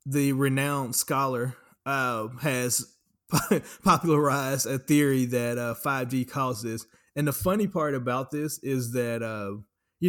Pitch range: 115-140 Hz